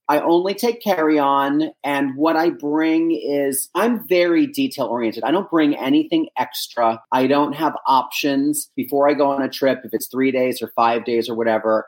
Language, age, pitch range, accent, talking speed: English, 30-49, 120-150 Hz, American, 180 wpm